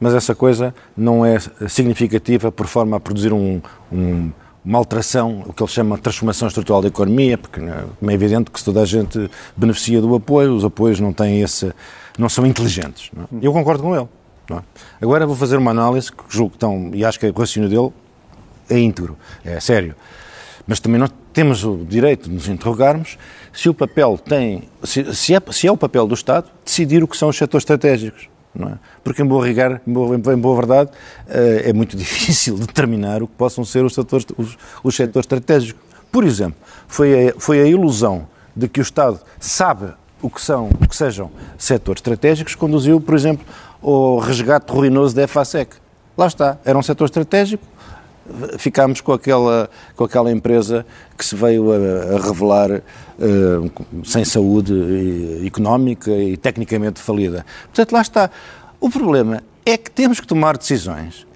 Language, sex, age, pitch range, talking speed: Portuguese, male, 50-69, 105-140 Hz, 185 wpm